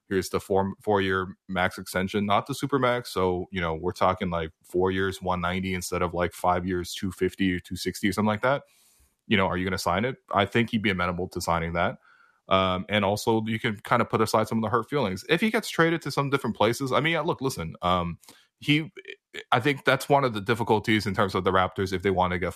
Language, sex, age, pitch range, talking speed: English, male, 20-39, 90-120 Hz, 245 wpm